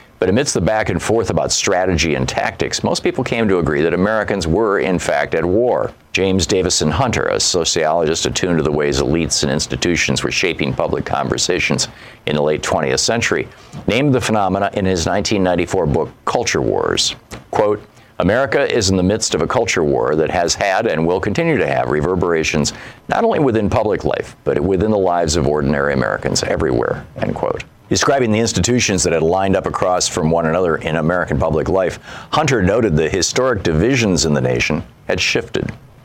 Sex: male